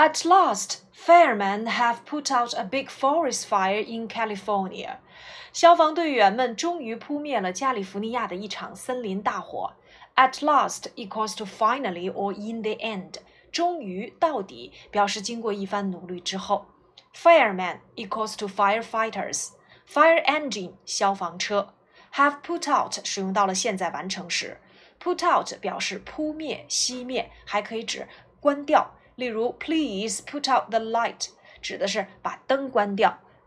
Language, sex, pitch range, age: Chinese, female, 200-285 Hz, 30-49